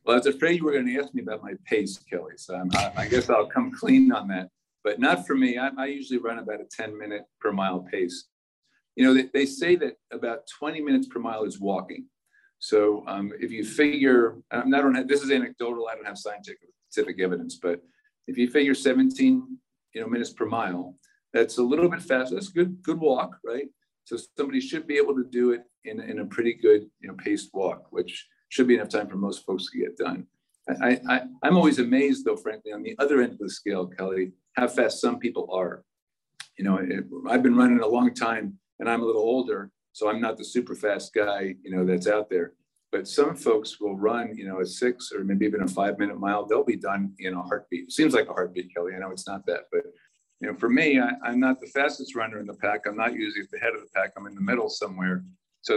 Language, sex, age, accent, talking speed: English, male, 50-69, American, 240 wpm